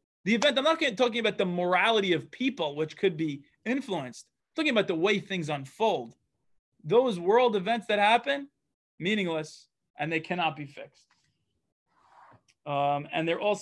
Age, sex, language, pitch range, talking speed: 20-39, male, English, 160-225 Hz, 160 wpm